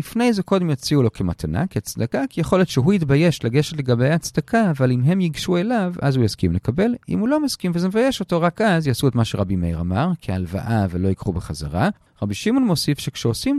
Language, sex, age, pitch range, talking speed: Hebrew, male, 40-59, 95-155 Hz, 210 wpm